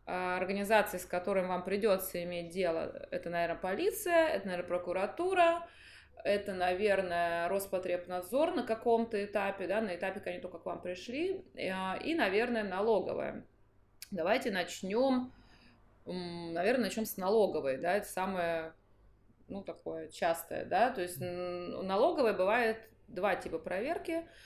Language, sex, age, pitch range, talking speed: Russian, female, 20-39, 180-235 Hz, 120 wpm